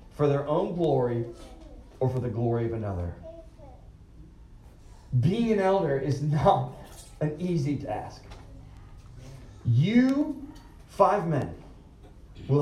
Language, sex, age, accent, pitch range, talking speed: English, male, 40-59, American, 120-200 Hz, 105 wpm